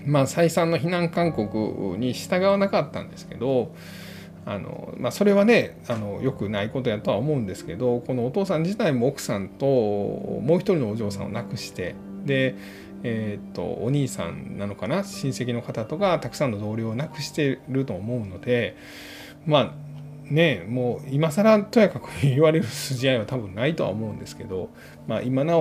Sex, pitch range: male, 110-180 Hz